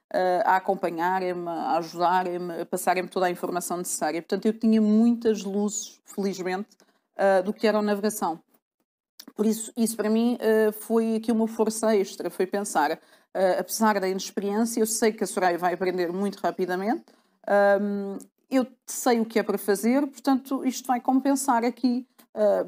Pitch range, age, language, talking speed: 195-235 Hz, 40-59, Portuguese, 165 wpm